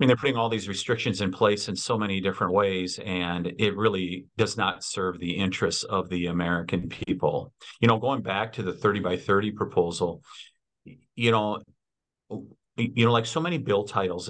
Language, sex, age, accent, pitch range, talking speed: English, male, 50-69, American, 95-130 Hz, 185 wpm